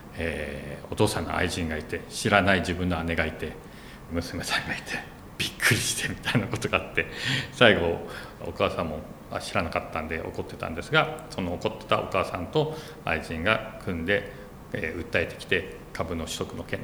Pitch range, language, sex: 85-110 Hz, Japanese, male